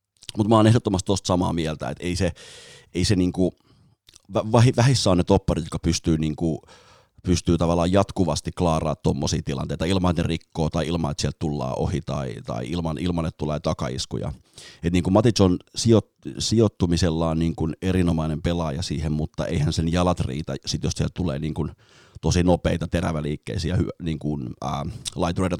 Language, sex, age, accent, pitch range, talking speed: Finnish, male, 30-49, native, 80-95 Hz, 155 wpm